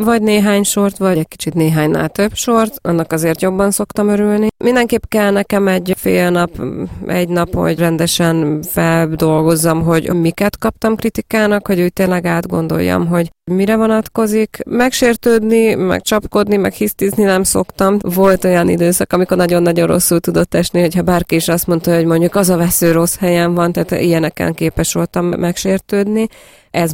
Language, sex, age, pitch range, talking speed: Hungarian, female, 20-39, 160-195 Hz, 160 wpm